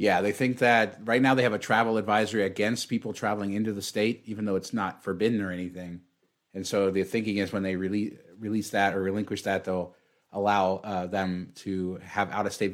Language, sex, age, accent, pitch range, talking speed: English, male, 30-49, American, 95-110 Hz, 205 wpm